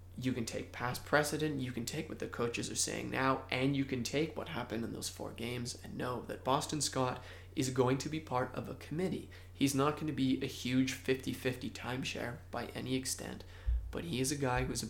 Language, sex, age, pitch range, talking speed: English, male, 20-39, 95-135 Hz, 230 wpm